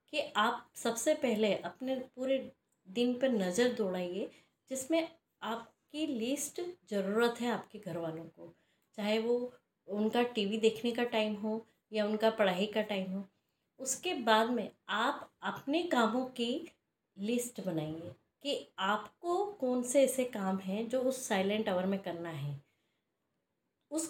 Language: Hindi